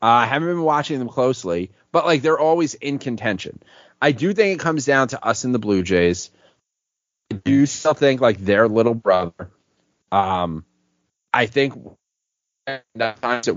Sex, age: male, 30-49